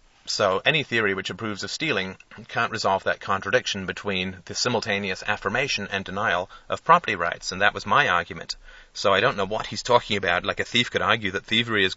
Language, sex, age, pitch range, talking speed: English, male, 30-49, 95-120 Hz, 205 wpm